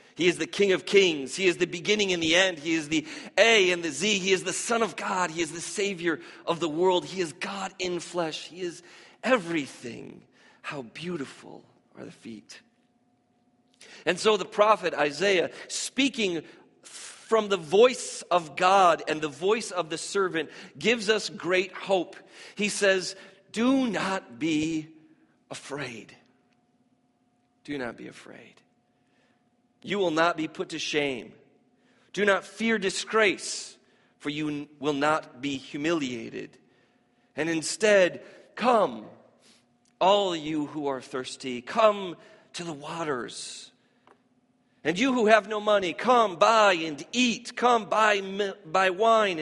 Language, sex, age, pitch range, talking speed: English, male, 40-59, 160-220 Hz, 145 wpm